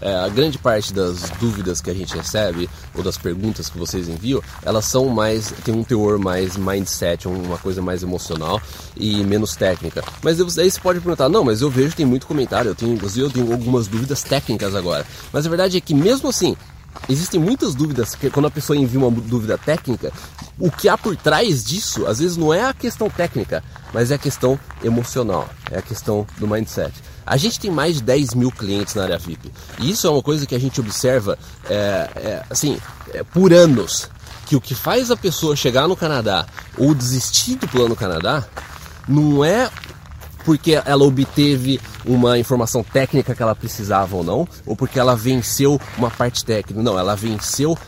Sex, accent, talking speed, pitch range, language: male, Brazilian, 185 wpm, 100-145 Hz, Portuguese